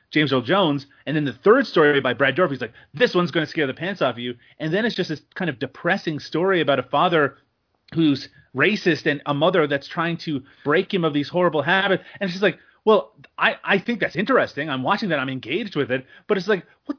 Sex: male